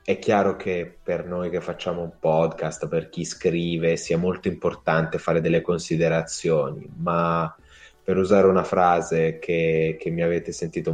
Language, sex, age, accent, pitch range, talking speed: Italian, male, 20-39, native, 85-100 Hz, 155 wpm